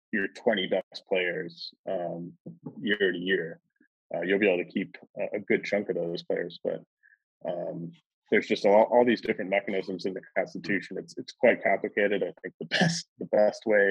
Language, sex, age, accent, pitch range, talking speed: English, male, 20-39, American, 90-100 Hz, 190 wpm